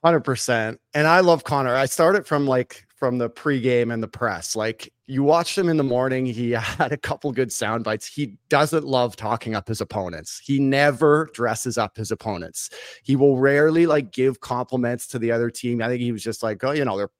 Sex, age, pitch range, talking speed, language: male, 30-49, 115-150 Hz, 220 wpm, English